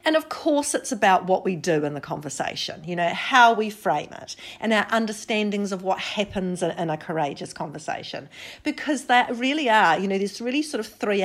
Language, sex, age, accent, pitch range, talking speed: English, female, 40-59, Australian, 185-235 Hz, 205 wpm